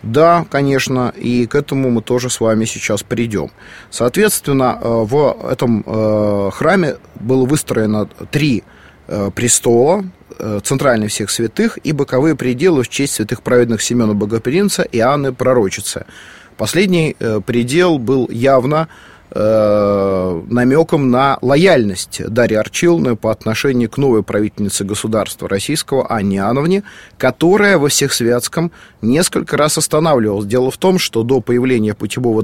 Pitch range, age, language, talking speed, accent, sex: 110-140 Hz, 30-49, Russian, 120 wpm, native, male